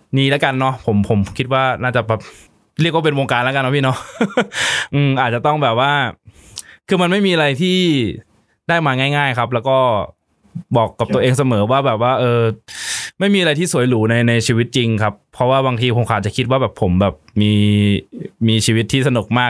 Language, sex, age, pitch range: Thai, male, 20-39, 110-135 Hz